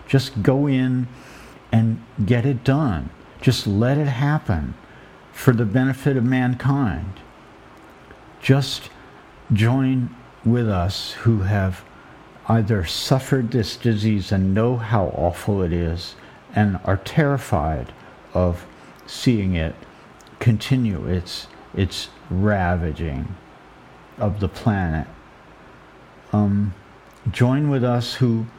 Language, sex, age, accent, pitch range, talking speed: English, male, 50-69, American, 100-125 Hz, 105 wpm